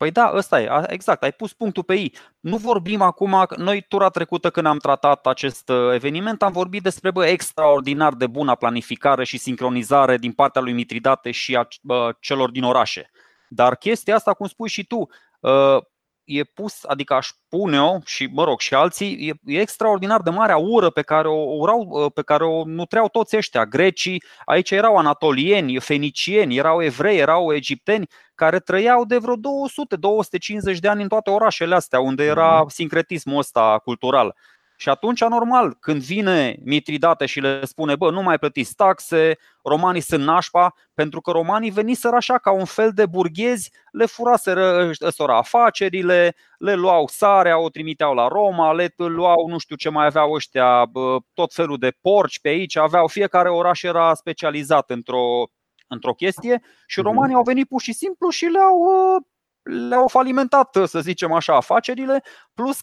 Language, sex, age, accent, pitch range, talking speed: Romanian, male, 20-39, native, 150-210 Hz, 165 wpm